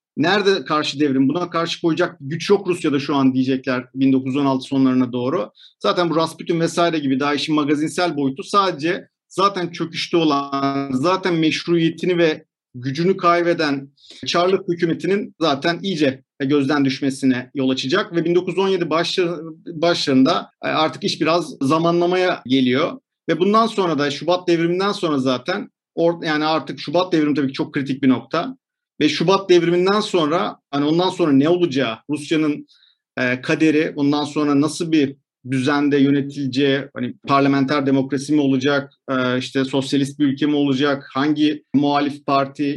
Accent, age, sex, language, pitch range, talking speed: native, 50-69, male, Turkish, 140-175 Hz, 140 wpm